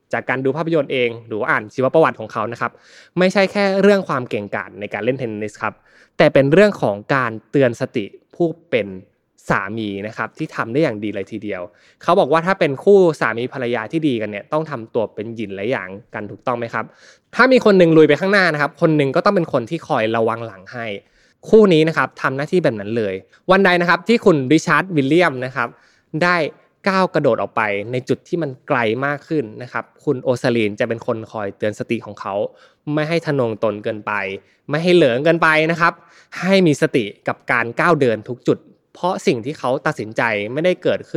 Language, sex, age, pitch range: Thai, male, 20-39, 115-170 Hz